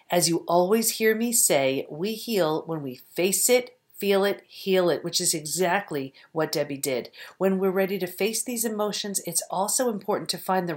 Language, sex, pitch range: English, female, 175-230 Hz